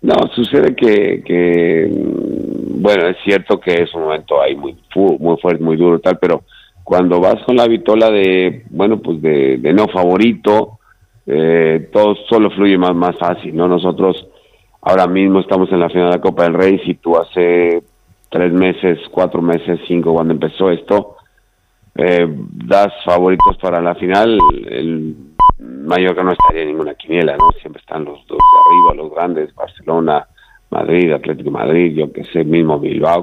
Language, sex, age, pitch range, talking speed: Spanish, male, 50-69, 85-110 Hz, 170 wpm